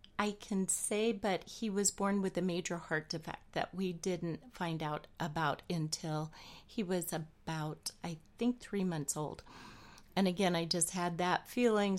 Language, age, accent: English, 40-59, American